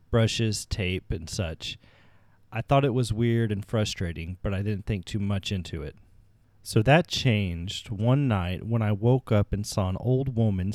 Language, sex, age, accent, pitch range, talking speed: English, male, 30-49, American, 95-110 Hz, 185 wpm